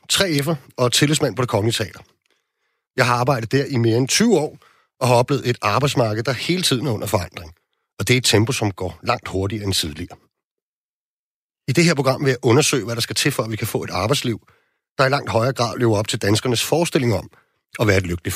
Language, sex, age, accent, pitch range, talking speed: Danish, male, 40-59, native, 110-145 Hz, 230 wpm